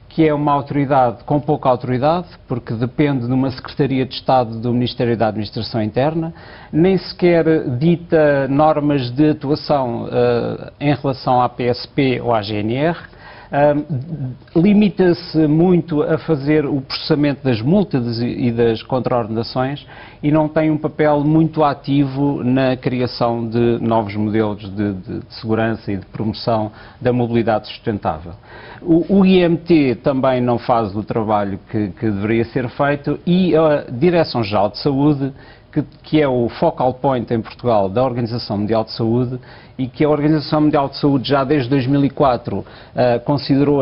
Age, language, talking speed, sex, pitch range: 50-69, Portuguese, 145 wpm, male, 120-150 Hz